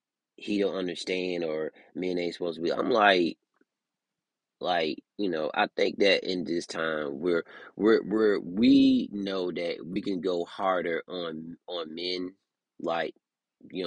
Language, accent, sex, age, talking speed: English, American, male, 30-49, 150 wpm